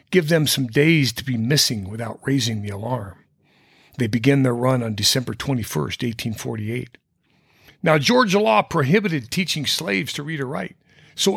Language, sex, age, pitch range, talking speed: English, male, 50-69, 115-155 Hz, 160 wpm